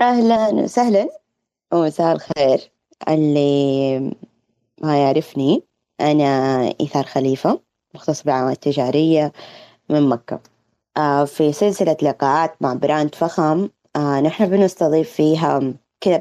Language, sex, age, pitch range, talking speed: Arabic, female, 20-39, 150-220 Hz, 95 wpm